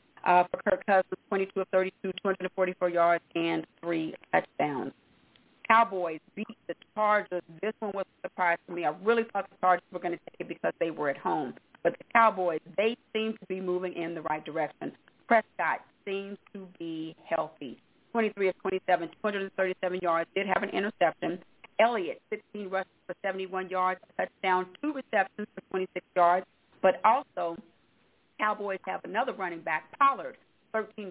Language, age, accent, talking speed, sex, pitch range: English, 40-59, American, 165 wpm, female, 170-195 Hz